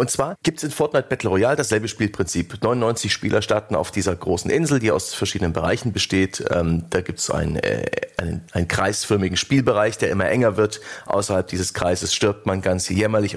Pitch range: 95-120 Hz